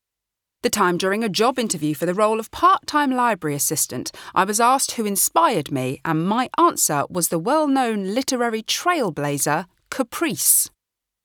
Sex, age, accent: female, 40-59, British